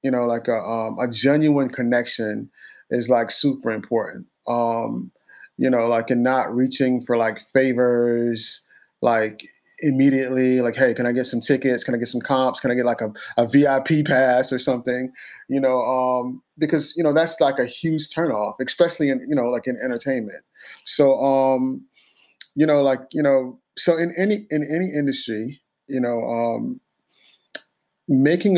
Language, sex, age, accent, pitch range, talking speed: English, male, 30-49, American, 120-140 Hz, 170 wpm